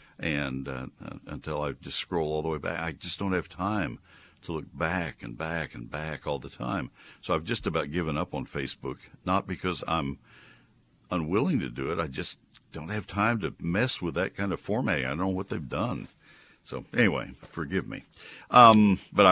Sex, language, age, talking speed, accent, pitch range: male, English, 60-79, 200 wpm, American, 70-90 Hz